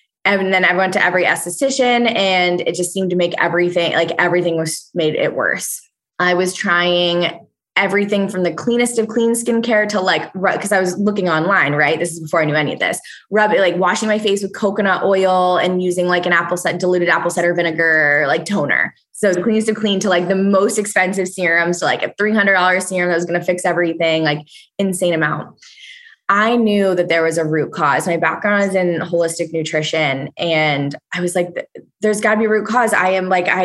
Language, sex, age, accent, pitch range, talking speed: English, female, 20-39, American, 170-205 Hz, 220 wpm